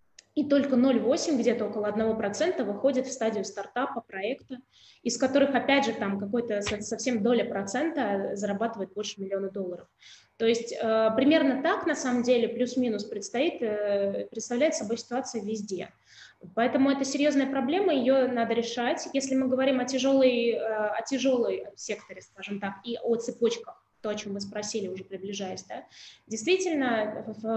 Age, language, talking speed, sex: 20-39, Russian, 145 wpm, female